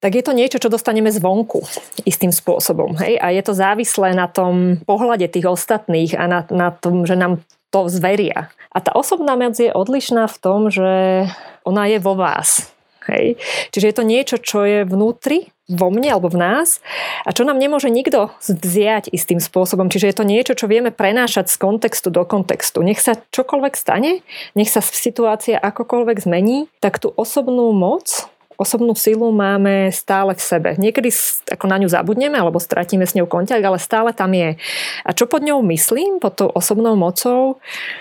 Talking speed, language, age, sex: 180 wpm, Slovak, 20-39, female